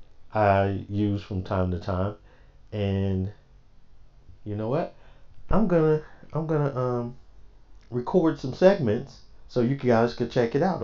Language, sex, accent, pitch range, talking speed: English, male, American, 95-130 Hz, 150 wpm